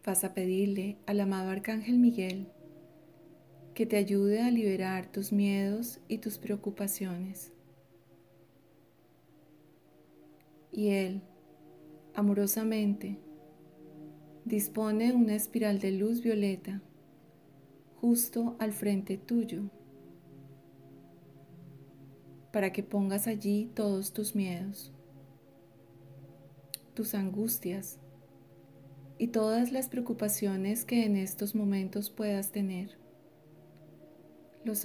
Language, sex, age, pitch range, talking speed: Spanish, female, 30-49, 155-210 Hz, 85 wpm